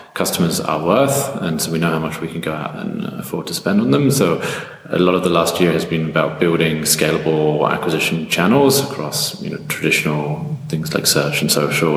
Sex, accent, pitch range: male, British, 75-85 Hz